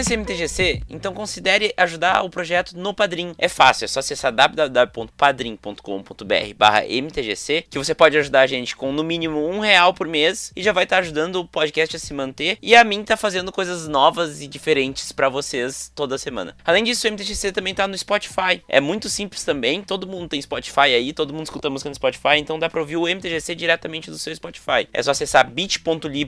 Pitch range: 145-190 Hz